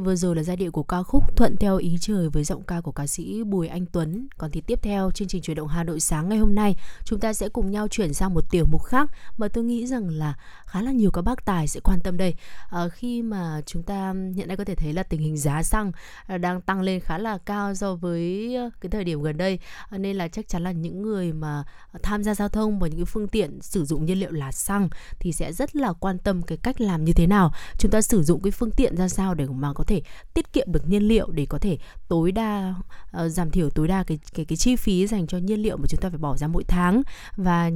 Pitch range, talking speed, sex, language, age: 165-210 Hz, 270 wpm, female, Vietnamese, 20-39